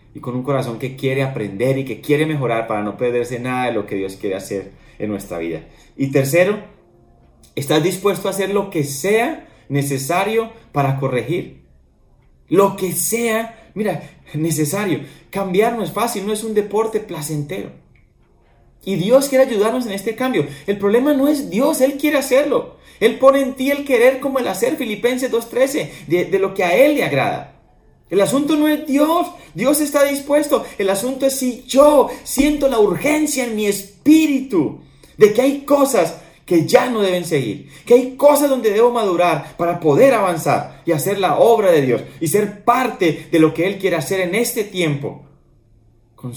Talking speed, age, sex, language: 180 wpm, 30-49, male, Spanish